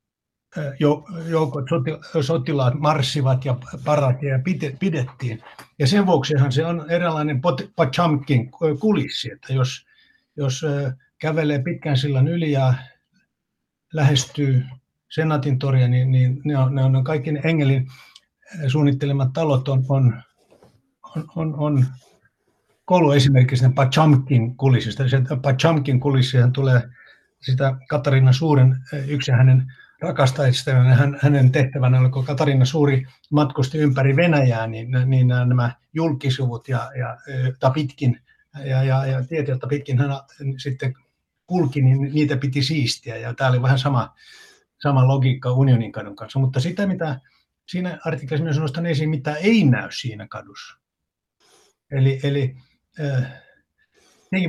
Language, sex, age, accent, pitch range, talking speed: Finnish, male, 60-79, native, 130-155 Hz, 115 wpm